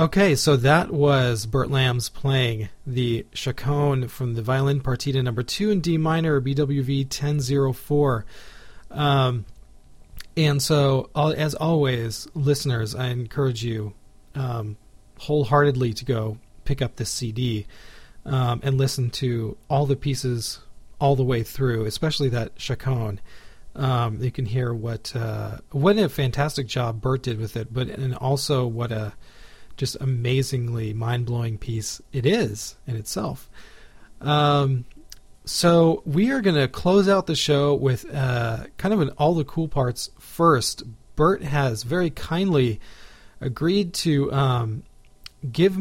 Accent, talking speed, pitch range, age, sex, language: American, 140 wpm, 120-145 Hz, 40-59, male, English